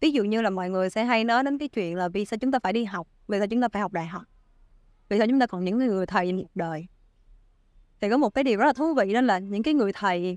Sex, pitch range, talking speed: female, 180-245 Hz, 305 wpm